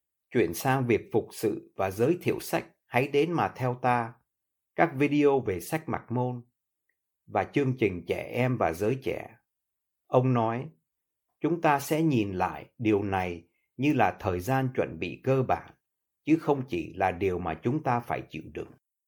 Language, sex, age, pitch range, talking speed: Vietnamese, male, 60-79, 105-140 Hz, 175 wpm